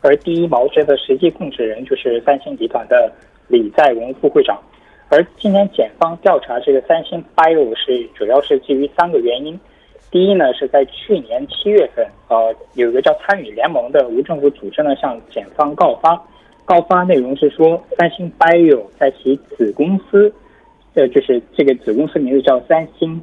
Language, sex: Korean, male